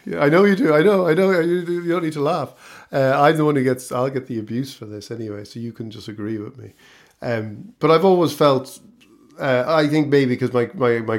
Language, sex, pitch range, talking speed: English, male, 110-140 Hz, 250 wpm